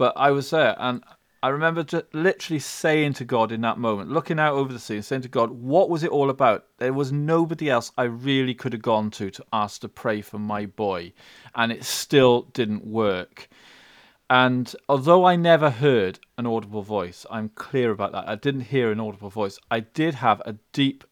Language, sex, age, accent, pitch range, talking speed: English, male, 40-59, British, 110-140 Hz, 205 wpm